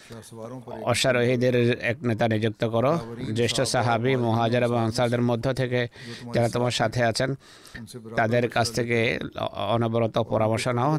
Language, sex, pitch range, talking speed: Bengali, male, 115-125 Hz, 105 wpm